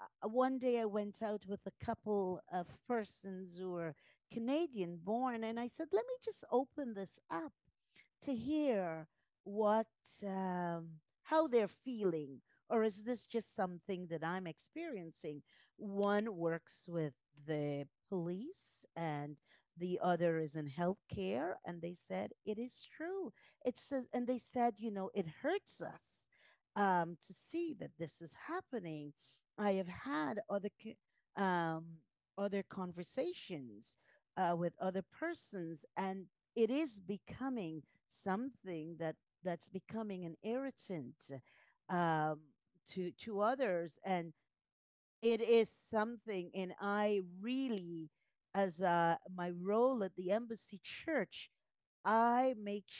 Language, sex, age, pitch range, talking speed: English, female, 40-59, 170-225 Hz, 130 wpm